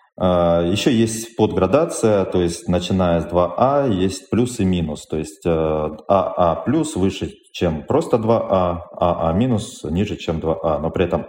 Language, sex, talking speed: Russian, male, 150 wpm